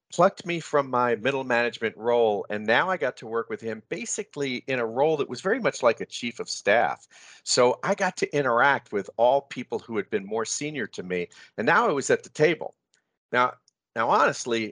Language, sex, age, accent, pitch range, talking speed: English, male, 40-59, American, 115-150 Hz, 215 wpm